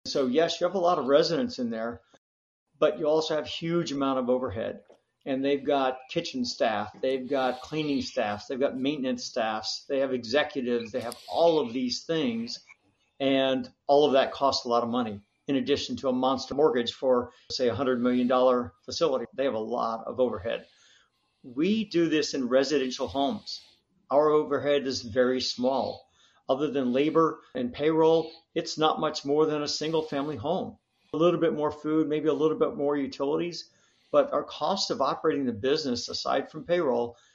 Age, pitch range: 50-69, 130-155 Hz